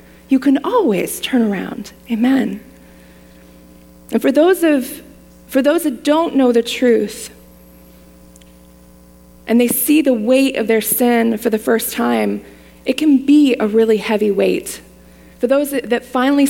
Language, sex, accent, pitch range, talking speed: English, female, American, 180-250 Hz, 150 wpm